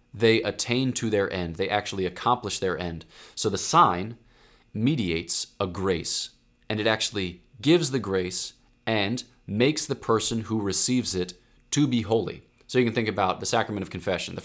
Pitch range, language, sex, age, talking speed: 100-125 Hz, English, male, 20-39, 175 wpm